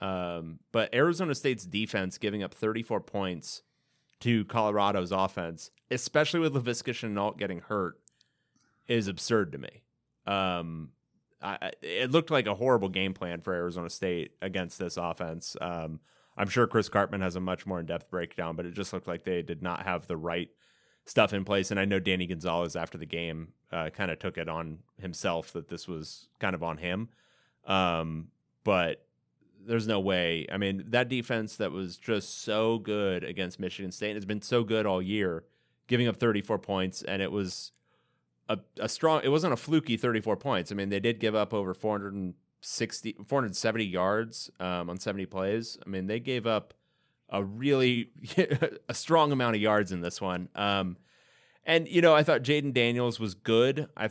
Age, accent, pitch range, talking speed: 30-49, American, 90-115 Hz, 180 wpm